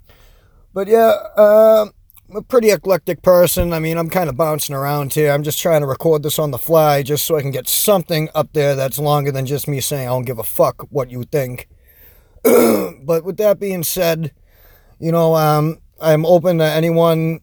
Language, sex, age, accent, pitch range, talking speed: English, male, 30-49, American, 130-165 Hz, 205 wpm